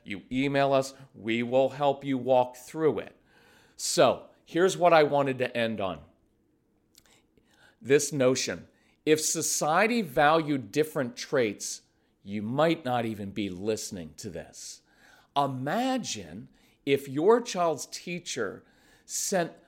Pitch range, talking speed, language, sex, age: 125-185 Hz, 120 wpm, English, male, 40-59